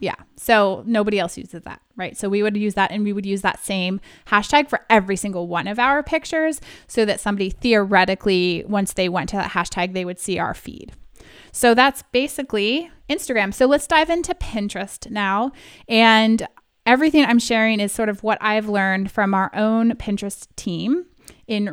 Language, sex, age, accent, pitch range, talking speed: English, female, 20-39, American, 190-240 Hz, 185 wpm